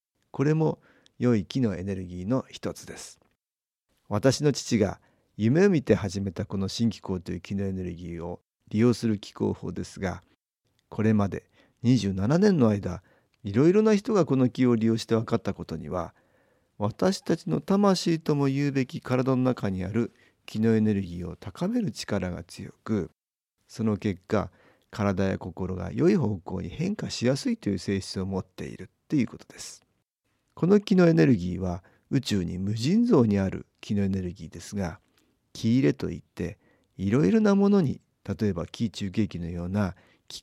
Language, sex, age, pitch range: Japanese, male, 50-69, 95-135 Hz